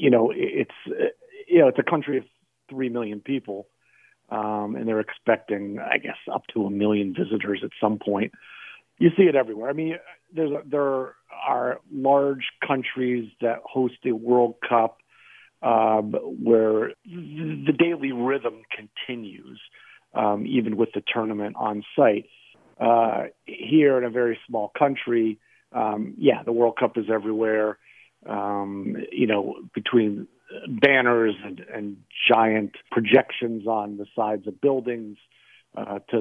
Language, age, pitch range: English, 50-69, 110-135 Hz